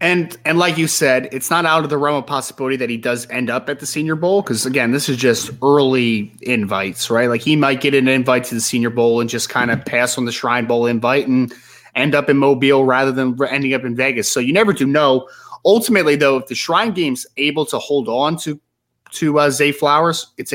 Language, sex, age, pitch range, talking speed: English, male, 20-39, 130-165 Hz, 240 wpm